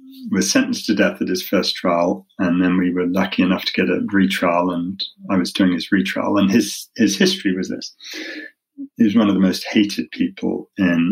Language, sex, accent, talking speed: English, male, British, 210 wpm